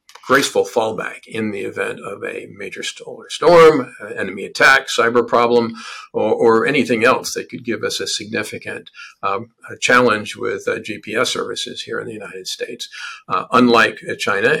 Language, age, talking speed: English, 50-69, 155 wpm